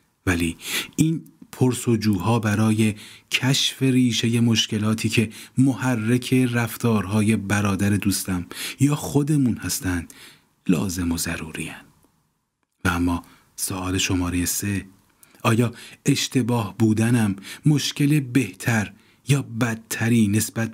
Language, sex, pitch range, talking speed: Persian, male, 95-130 Hz, 95 wpm